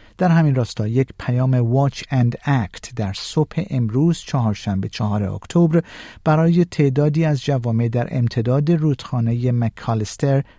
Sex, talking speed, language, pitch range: male, 135 wpm, Persian, 115-160 Hz